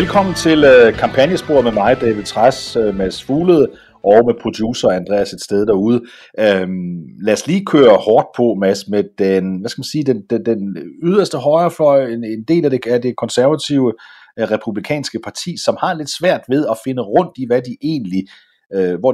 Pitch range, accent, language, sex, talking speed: 100-140 Hz, native, Danish, male, 195 wpm